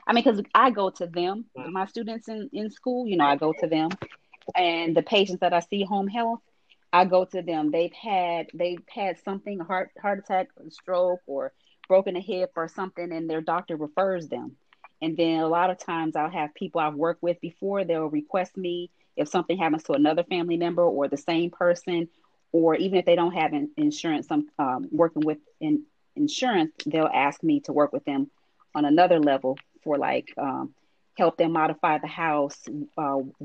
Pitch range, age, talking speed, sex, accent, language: 160-205 Hz, 30-49, 205 wpm, female, American, English